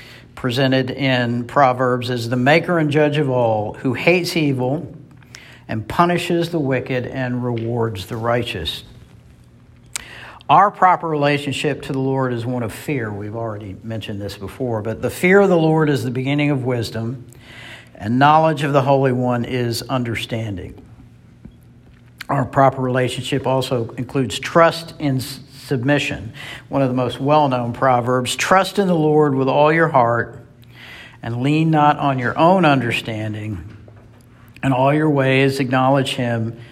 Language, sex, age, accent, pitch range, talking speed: English, male, 60-79, American, 115-140 Hz, 145 wpm